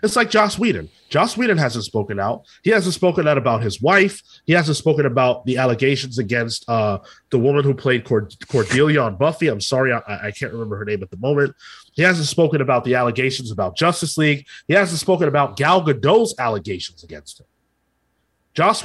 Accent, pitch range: American, 115-170 Hz